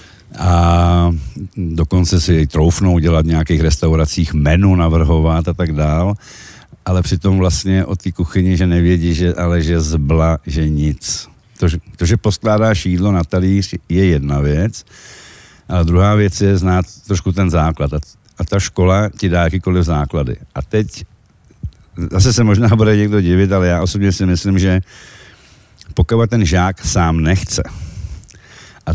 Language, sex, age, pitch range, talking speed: Slovak, male, 60-79, 85-100 Hz, 155 wpm